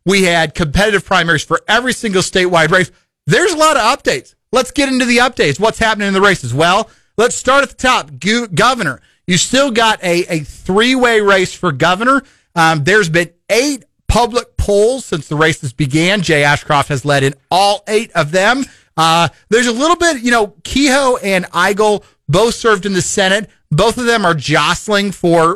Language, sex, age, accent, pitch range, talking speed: English, male, 40-59, American, 160-215 Hz, 190 wpm